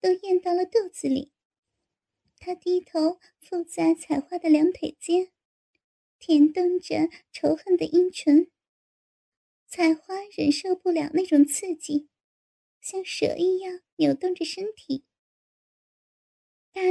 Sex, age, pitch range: male, 10-29, 310-365 Hz